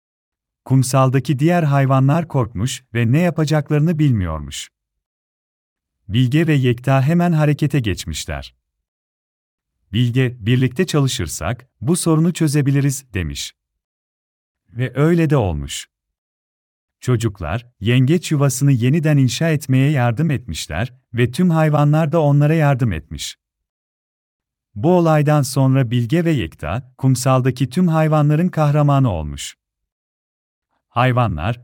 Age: 40-59